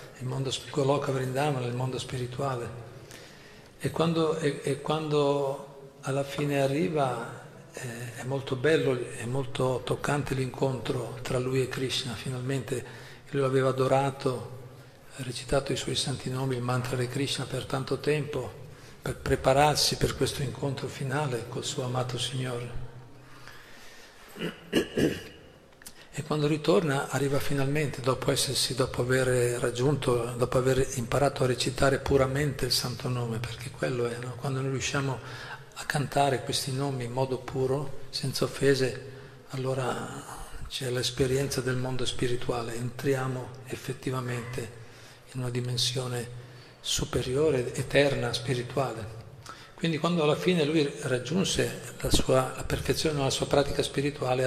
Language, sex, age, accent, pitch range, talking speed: Italian, male, 50-69, native, 125-140 Hz, 125 wpm